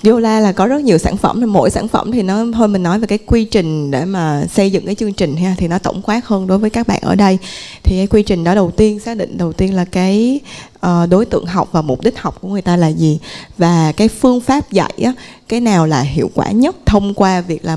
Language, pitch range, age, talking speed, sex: Vietnamese, 175-215 Hz, 20-39, 265 wpm, female